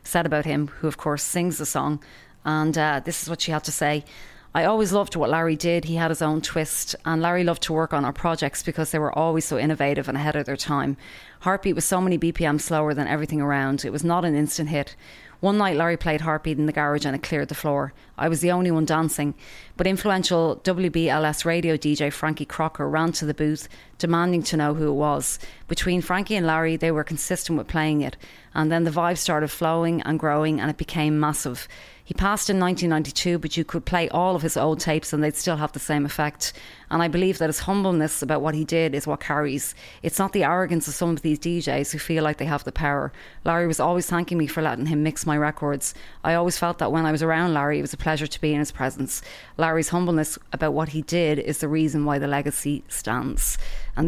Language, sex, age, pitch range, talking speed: English, female, 30-49, 150-170 Hz, 235 wpm